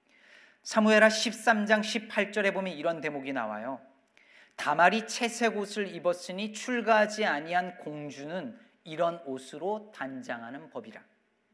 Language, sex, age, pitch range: Korean, male, 40-59, 190-235 Hz